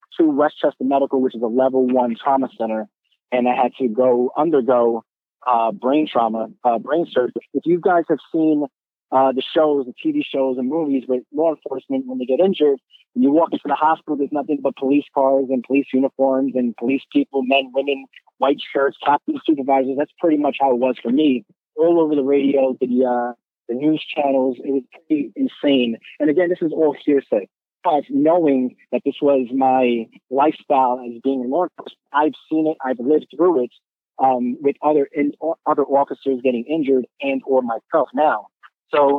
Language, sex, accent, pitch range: English, male, American, 125-150 Hz